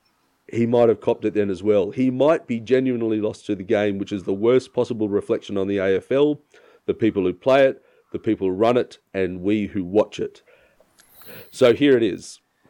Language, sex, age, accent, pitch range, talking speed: English, male, 40-59, Australian, 110-135 Hz, 210 wpm